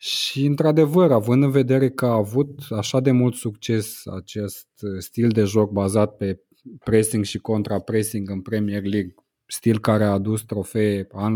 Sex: male